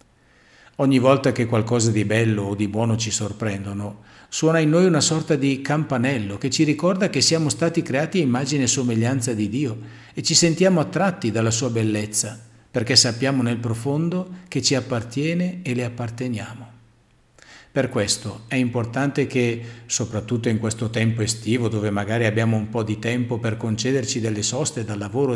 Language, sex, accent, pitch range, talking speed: Italian, male, native, 110-140 Hz, 170 wpm